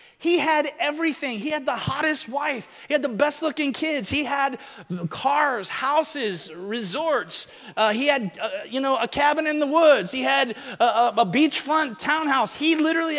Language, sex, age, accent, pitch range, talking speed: English, male, 30-49, American, 210-300 Hz, 180 wpm